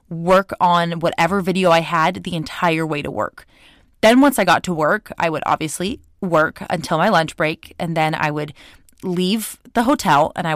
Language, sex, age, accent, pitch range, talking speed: English, female, 20-39, American, 160-195 Hz, 195 wpm